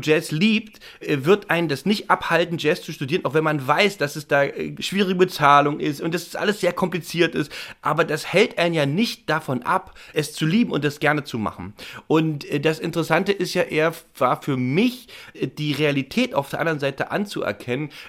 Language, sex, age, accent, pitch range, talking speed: German, male, 30-49, German, 145-180 Hz, 190 wpm